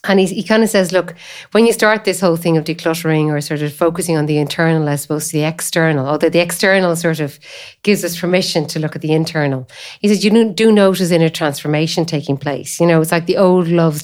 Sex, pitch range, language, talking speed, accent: female, 155-185 Hz, English, 240 wpm, Irish